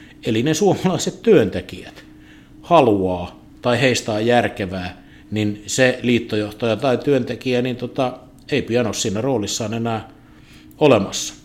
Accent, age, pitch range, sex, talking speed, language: native, 50-69, 105-130 Hz, male, 120 wpm, Finnish